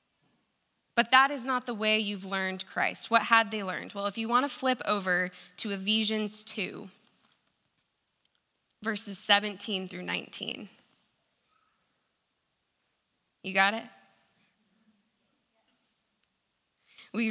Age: 20-39